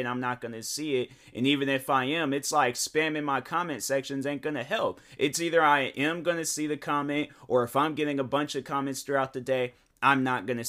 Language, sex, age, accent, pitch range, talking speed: English, male, 20-39, American, 120-150 Hz, 235 wpm